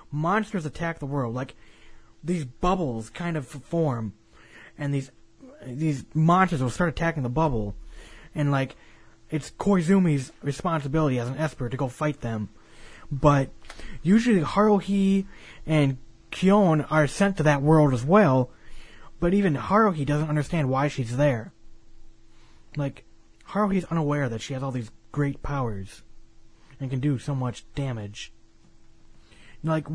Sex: male